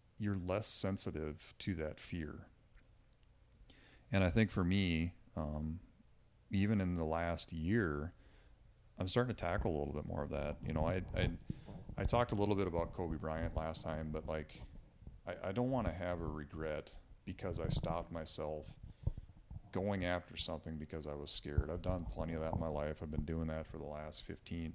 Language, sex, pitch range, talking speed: English, male, 80-95 Hz, 190 wpm